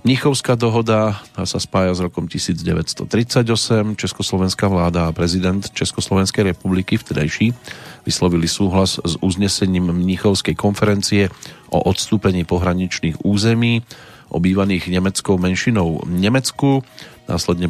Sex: male